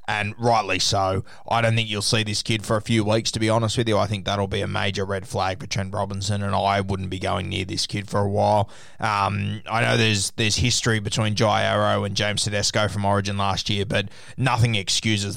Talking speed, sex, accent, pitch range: 235 wpm, male, Australian, 100-115 Hz